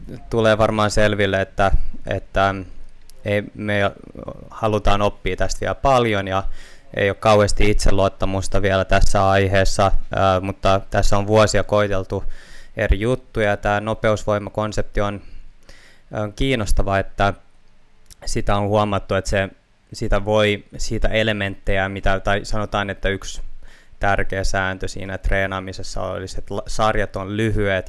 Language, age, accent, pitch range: Finnish, 20-39, native, 95-110 Hz